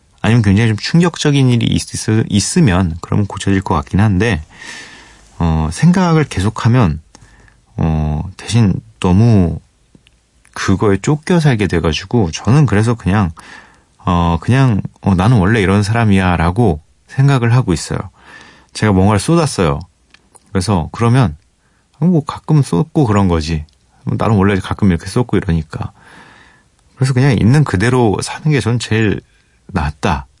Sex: male